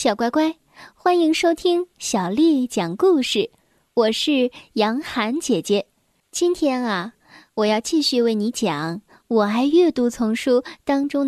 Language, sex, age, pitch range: Chinese, female, 10-29, 215-305 Hz